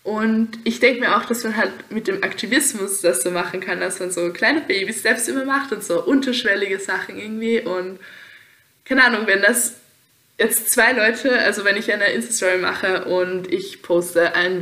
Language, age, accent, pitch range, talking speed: German, 10-29, German, 180-225 Hz, 185 wpm